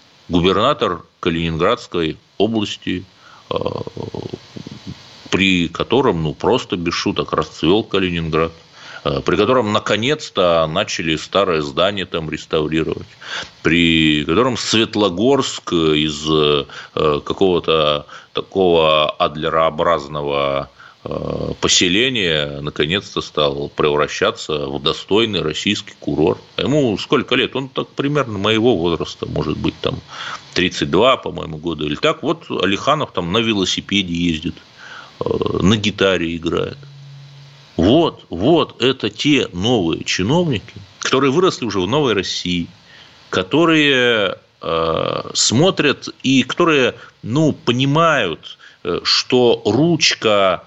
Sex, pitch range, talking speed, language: male, 80-125 Hz, 95 wpm, Russian